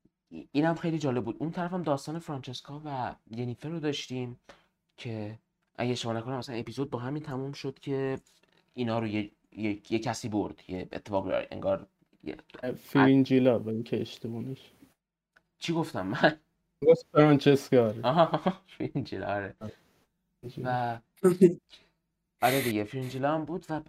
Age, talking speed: 20-39, 115 wpm